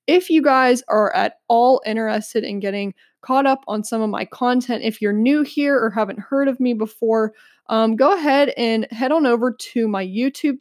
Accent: American